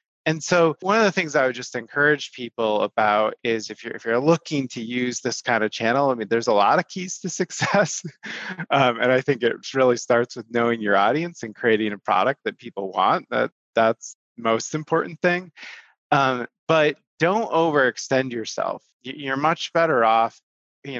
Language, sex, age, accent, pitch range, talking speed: English, male, 30-49, American, 115-145 Hz, 190 wpm